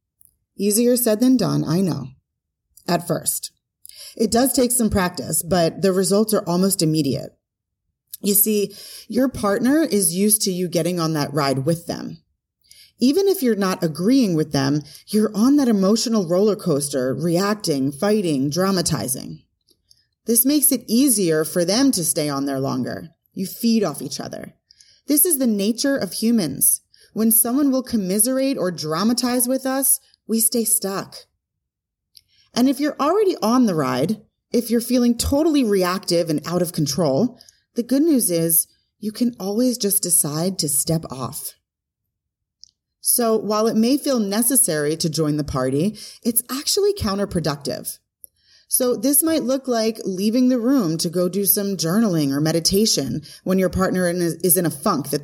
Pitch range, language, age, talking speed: 155-235 Hz, English, 30-49, 160 wpm